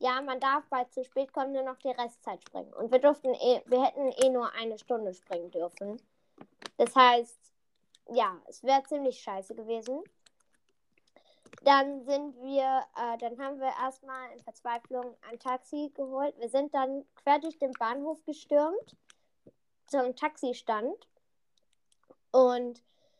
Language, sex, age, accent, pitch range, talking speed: German, female, 10-29, German, 240-285 Hz, 145 wpm